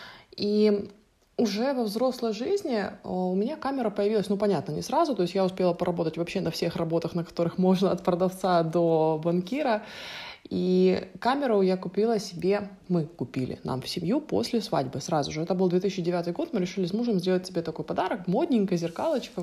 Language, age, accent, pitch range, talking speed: Ukrainian, 20-39, native, 175-220 Hz, 175 wpm